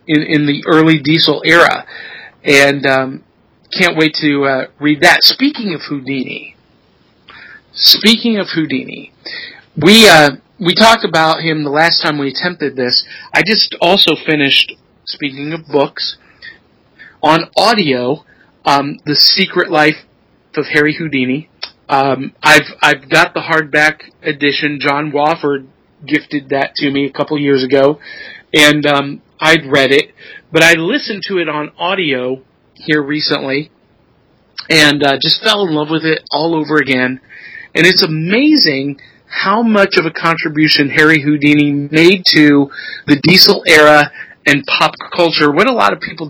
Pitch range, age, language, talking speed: 145-175 Hz, 40-59, English, 145 wpm